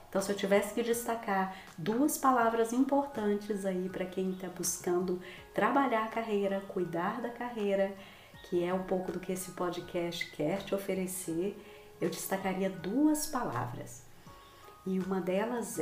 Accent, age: Brazilian, 40-59